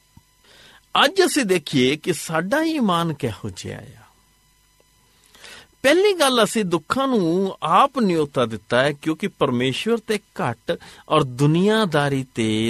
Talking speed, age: 120 wpm, 50-69